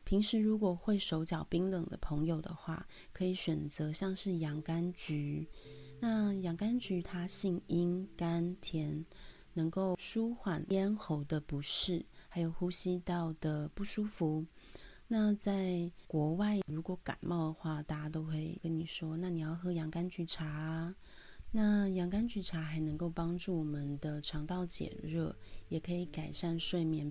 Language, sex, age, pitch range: Chinese, female, 30-49, 155-185 Hz